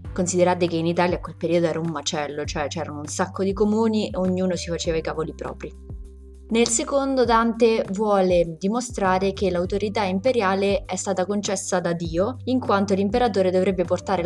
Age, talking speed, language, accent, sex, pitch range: 20-39, 175 wpm, Italian, native, female, 165-200 Hz